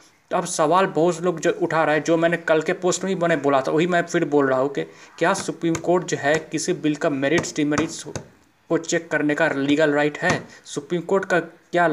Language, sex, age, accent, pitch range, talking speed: Hindi, male, 20-39, native, 150-165 Hz, 235 wpm